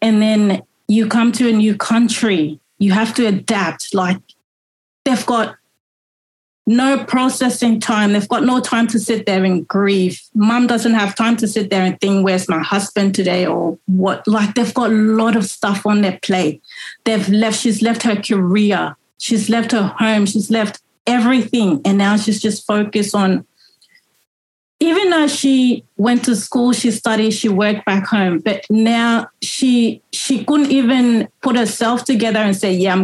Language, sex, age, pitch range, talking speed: English, female, 30-49, 200-235 Hz, 175 wpm